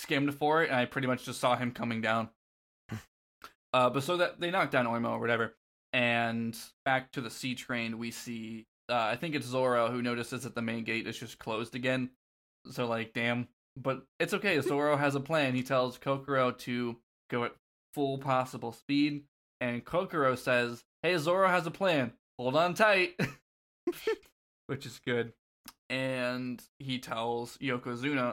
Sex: male